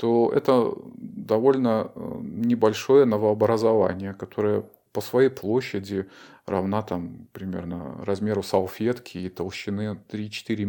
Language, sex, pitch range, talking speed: Russian, male, 100-125 Hz, 95 wpm